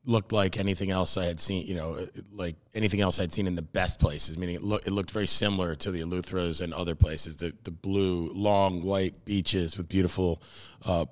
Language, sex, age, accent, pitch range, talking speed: English, male, 30-49, American, 90-110 Hz, 215 wpm